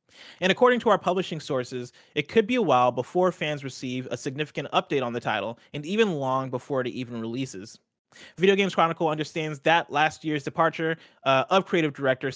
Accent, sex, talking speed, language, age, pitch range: American, male, 190 wpm, English, 30-49, 130-180 Hz